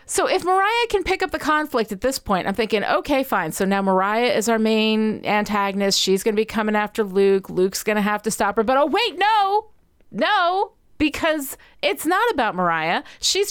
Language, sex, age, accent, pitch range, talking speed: English, female, 40-59, American, 205-340 Hz, 210 wpm